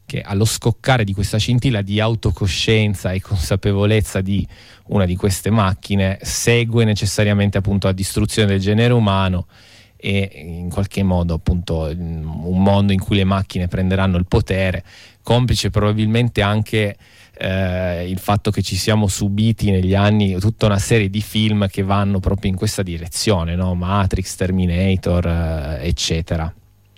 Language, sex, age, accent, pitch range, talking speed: Italian, male, 20-39, native, 95-105 Hz, 145 wpm